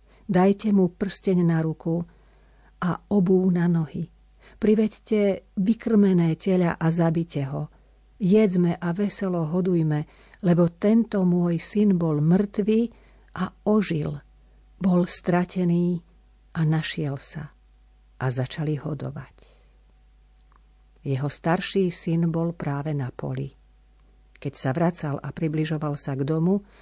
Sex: female